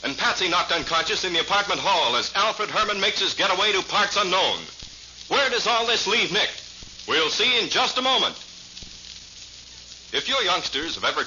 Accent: American